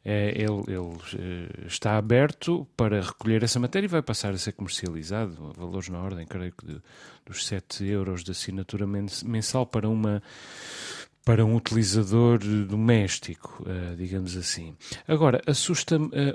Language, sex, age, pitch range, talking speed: Portuguese, male, 30-49, 95-120 Hz, 140 wpm